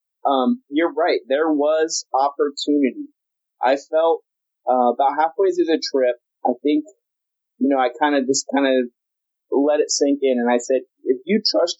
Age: 30-49